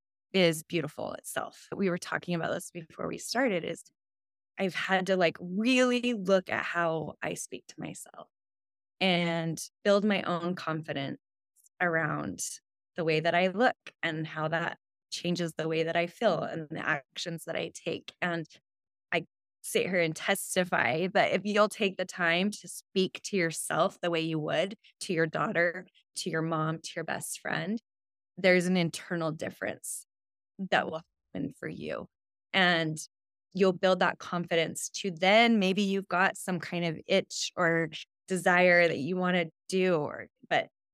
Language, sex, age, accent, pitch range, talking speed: English, female, 10-29, American, 165-195 Hz, 165 wpm